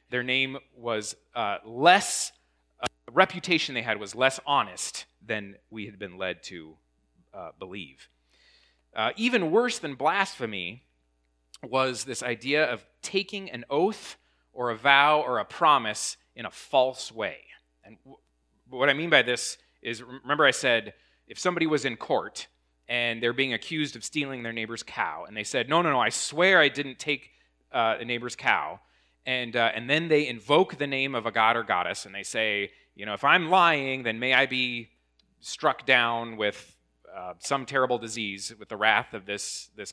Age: 30-49